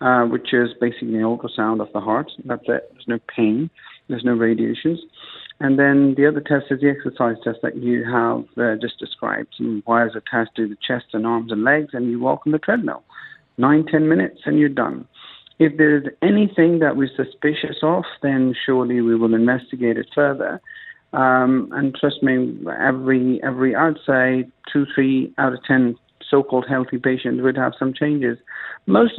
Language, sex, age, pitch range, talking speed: English, male, 50-69, 120-155 Hz, 185 wpm